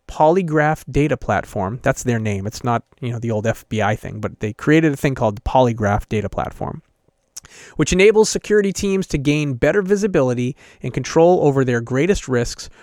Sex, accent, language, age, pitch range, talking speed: male, American, English, 30-49, 130-175 Hz, 175 wpm